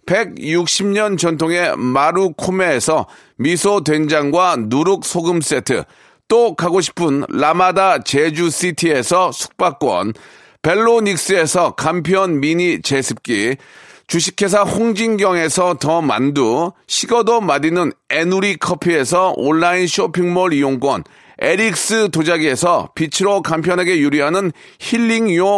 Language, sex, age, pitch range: Korean, male, 40-59, 170-215 Hz